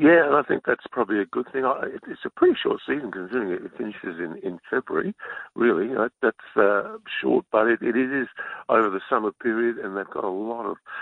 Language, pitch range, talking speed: English, 95-120 Hz, 220 wpm